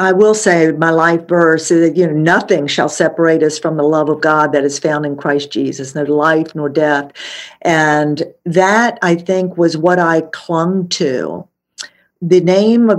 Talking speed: 185 wpm